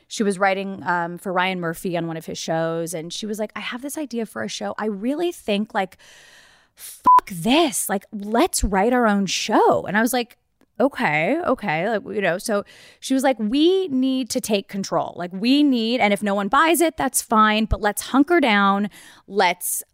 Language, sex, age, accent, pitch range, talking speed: English, female, 20-39, American, 180-230 Hz, 210 wpm